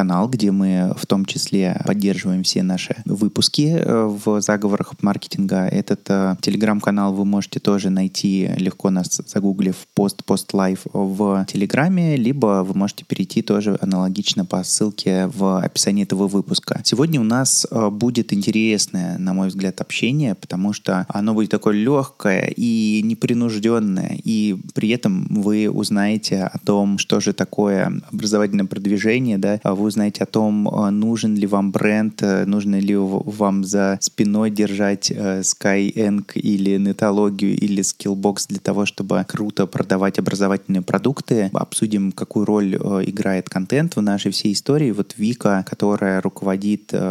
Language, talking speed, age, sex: Russian, 135 wpm, 20-39, male